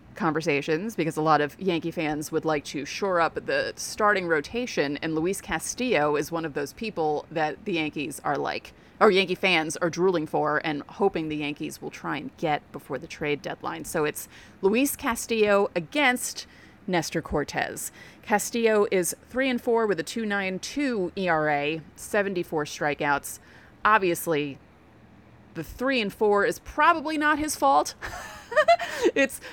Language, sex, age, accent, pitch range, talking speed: English, female, 30-49, American, 160-215 Hz, 155 wpm